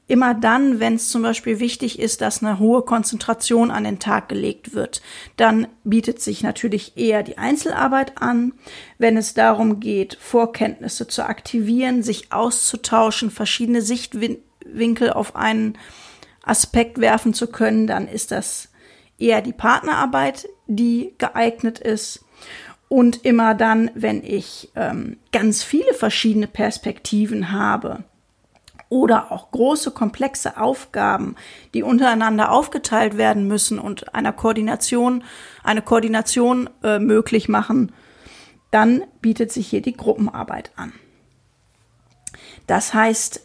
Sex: female